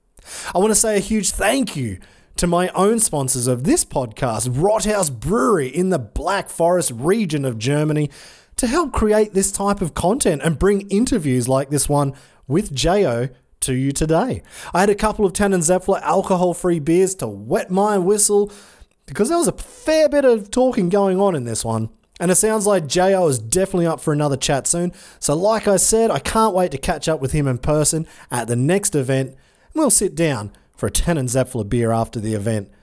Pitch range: 130-195 Hz